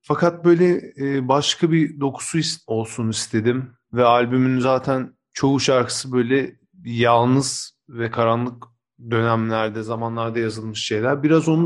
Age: 40-59